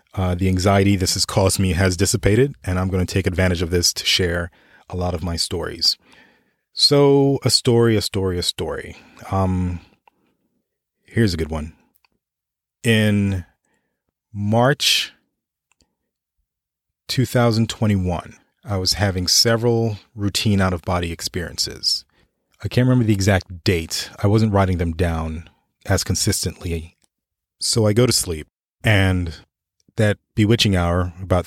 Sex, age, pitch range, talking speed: male, 30-49, 90-105 Hz, 130 wpm